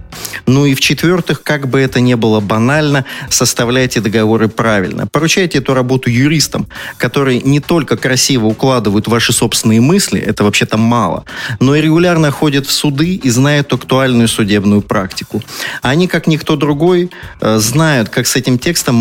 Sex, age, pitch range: male, 30-49, 115-150 Hz